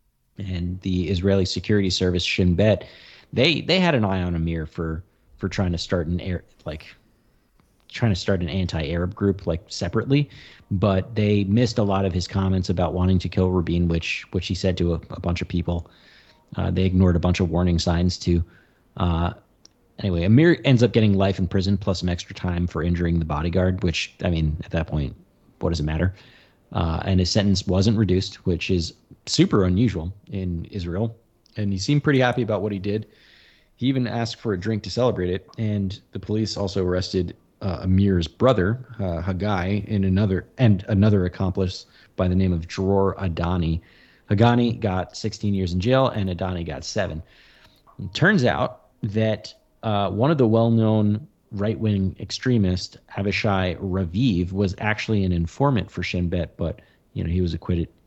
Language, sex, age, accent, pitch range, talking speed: English, male, 30-49, American, 90-105 Hz, 180 wpm